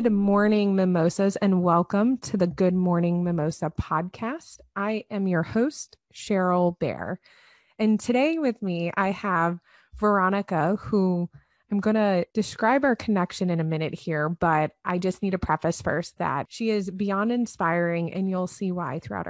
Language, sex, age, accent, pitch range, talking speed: English, female, 20-39, American, 175-215 Hz, 160 wpm